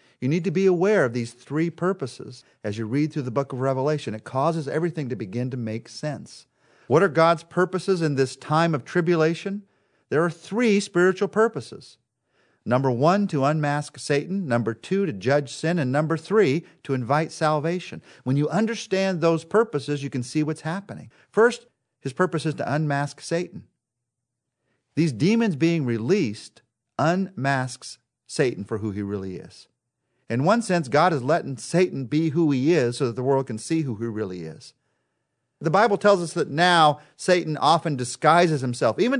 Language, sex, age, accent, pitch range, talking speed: English, male, 50-69, American, 130-185 Hz, 175 wpm